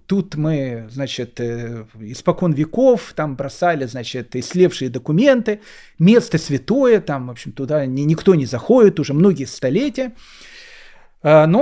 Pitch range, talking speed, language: 150-225 Hz, 115 wpm, Russian